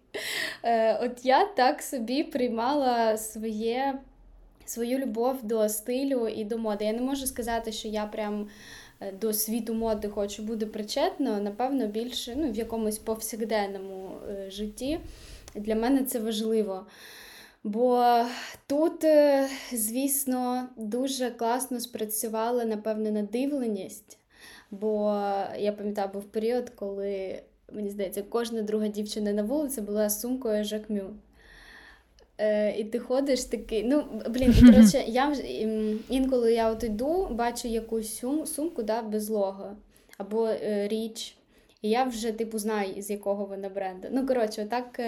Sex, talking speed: female, 125 wpm